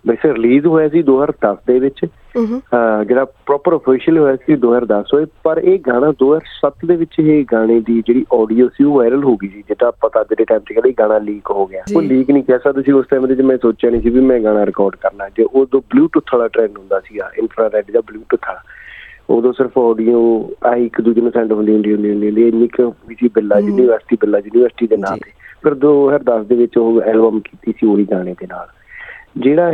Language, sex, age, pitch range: Punjabi, male, 40-59, 110-145 Hz